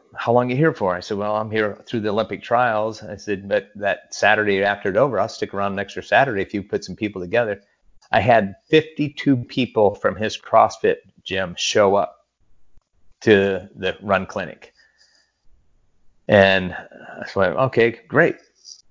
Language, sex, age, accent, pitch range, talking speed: English, male, 30-49, American, 95-110 Hz, 170 wpm